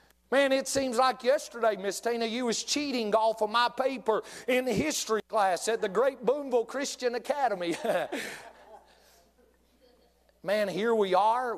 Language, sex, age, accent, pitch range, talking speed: English, male, 40-59, American, 170-240 Hz, 140 wpm